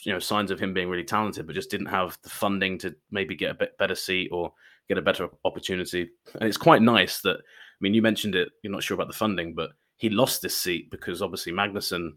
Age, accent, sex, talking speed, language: 20-39, British, male, 245 wpm, English